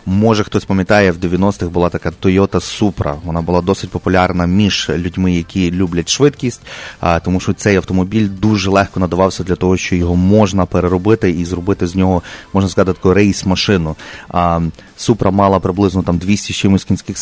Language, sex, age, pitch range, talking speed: English, male, 30-49, 90-105 Hz, 165 wpm